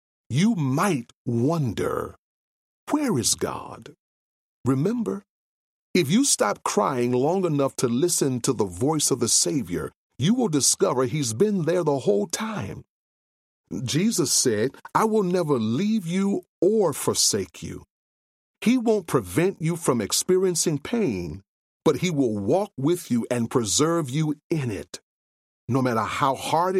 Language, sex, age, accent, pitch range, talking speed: English, male, 40-59, American, 115-180 Hz, 140 wpm